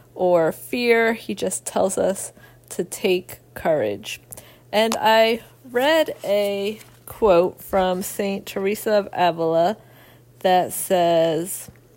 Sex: female